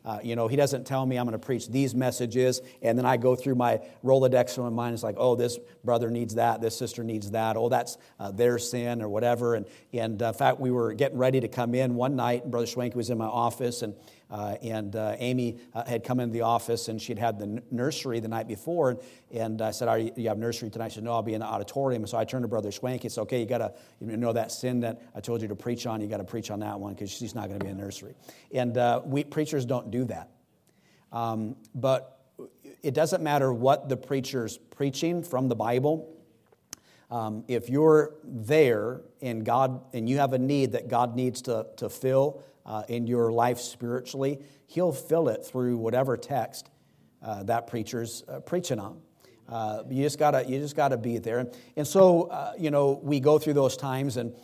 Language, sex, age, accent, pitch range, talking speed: English, male, 50-69, American, 115-135 Hz, 230 wpm